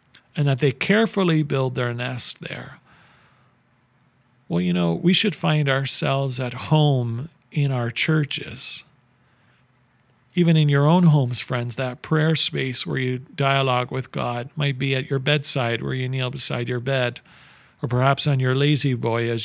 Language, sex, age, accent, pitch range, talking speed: English, male, 40-59, American, 120-150 Hz, 160 wpm